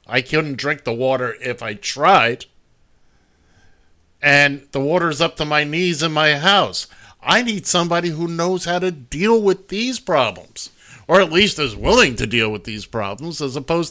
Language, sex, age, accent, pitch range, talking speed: English, male, 50-69, American, 110-165 Hz, 175 wpm